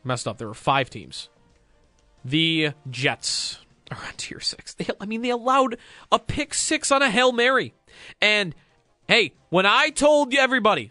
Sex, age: male, 30-49